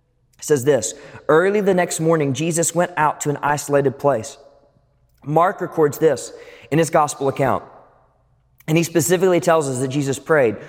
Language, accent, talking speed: English, American, 155 wpm